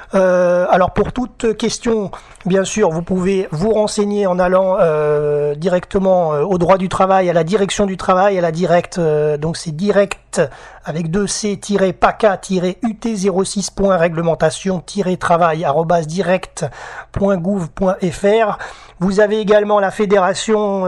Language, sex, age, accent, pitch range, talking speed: French, male, 30-49, French, 175-205 Hz, 110 wpm